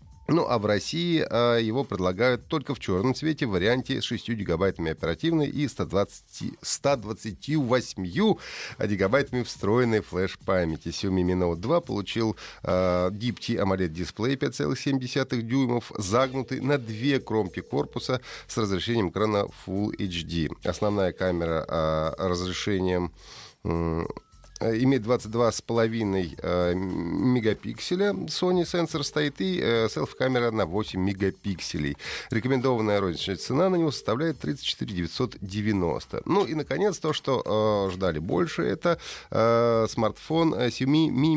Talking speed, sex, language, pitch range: 115 wpm, male, Russian, 95-130 Hz